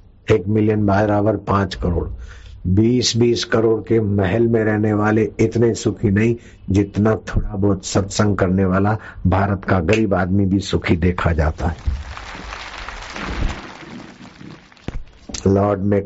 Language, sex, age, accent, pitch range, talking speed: Hindi, male, 60-79, native, 95-105 Hz, 125 wpm